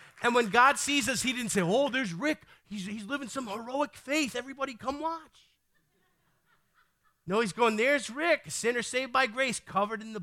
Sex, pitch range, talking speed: male, 160-220 Hz, 195 wpm